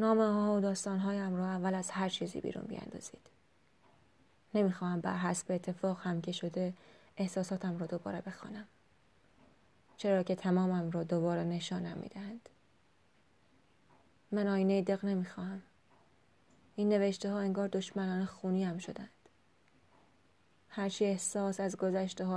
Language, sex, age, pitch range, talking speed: Persian, female, 20-39, 180-200 Hz, 125 wpm